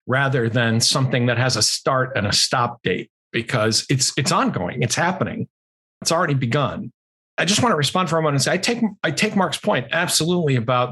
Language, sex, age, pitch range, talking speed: English, male, 50-69, 125-160 Hz, 210 wpm